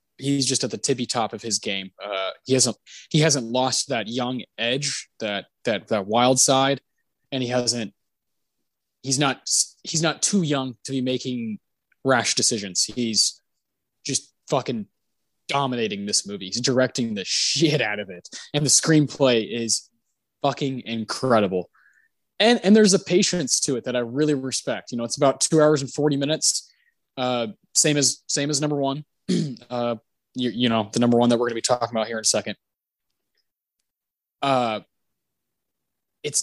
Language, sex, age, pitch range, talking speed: English, male, 20-39, 120-150 Hz, 170 wpm